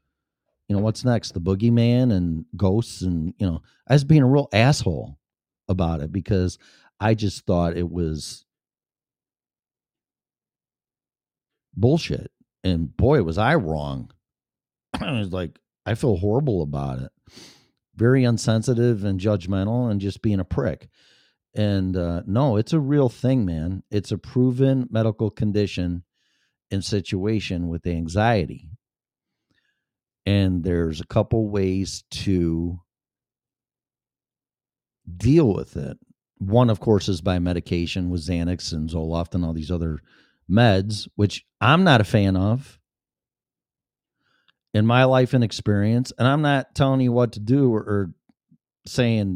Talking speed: 135 wpm